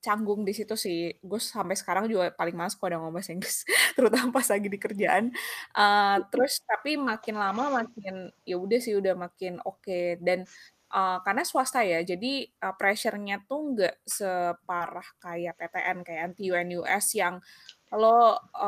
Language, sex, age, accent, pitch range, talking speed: Indonesian, female, 20-39, native, 180-225 Hz, 165 wpm